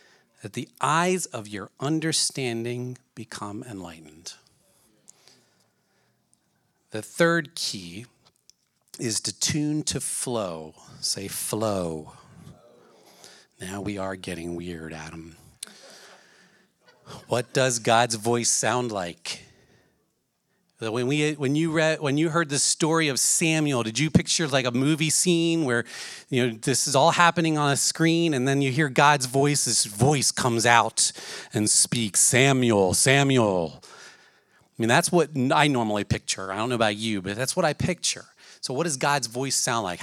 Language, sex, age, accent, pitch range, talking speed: English, male, 40-59, American, 105-150 Hz, 145 wpm